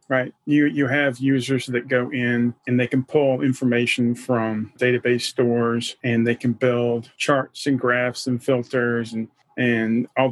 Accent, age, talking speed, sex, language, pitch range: American, 40-59, 165 wpm, male, English, 120-140 Hz